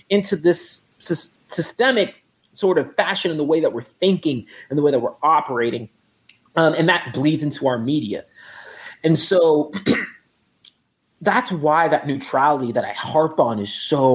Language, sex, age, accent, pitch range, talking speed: English, male, 30-49, American, 125-180 Hz, 155 wpm